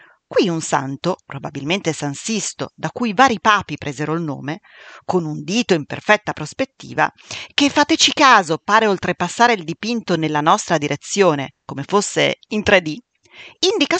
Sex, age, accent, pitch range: female, 40-59, native, 150-245 Hz